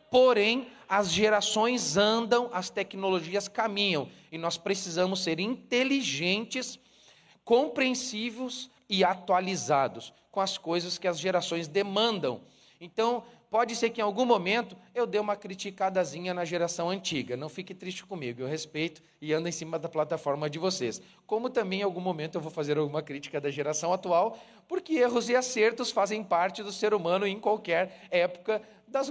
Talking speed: 155 wpm